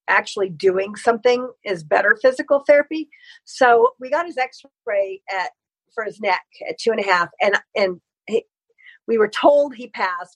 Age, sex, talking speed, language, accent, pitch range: 50-69, female, 170 wpm, English, American, 190-260 Hz